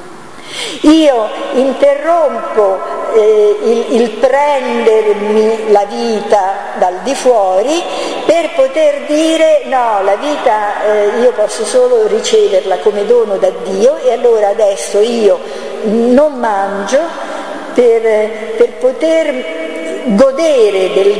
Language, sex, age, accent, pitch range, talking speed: Italian, female, 50-69, native, 205-320 Hz, 105 wpm